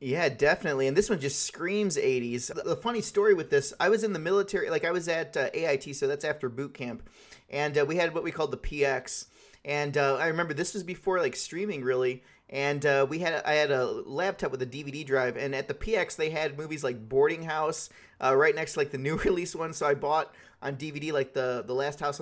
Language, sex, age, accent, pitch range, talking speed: English, male, 30-49, American, 140-210 Hz, 235 wpm